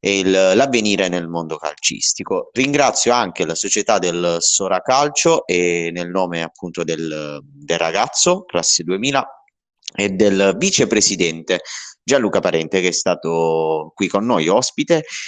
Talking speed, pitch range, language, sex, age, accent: 125 wpm, 85-130 Hz, Italian, male, 30-49, native